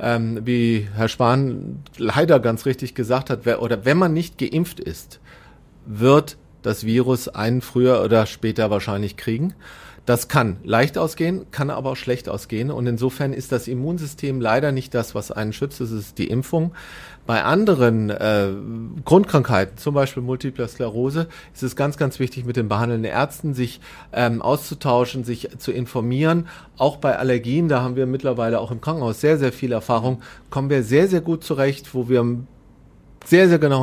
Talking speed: 170 wpm